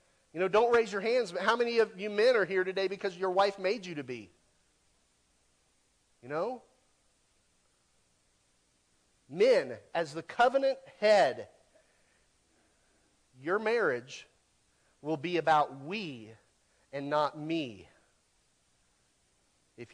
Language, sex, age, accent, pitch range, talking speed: English, male, 40-59, American, 150-210 Hz, 115 wpm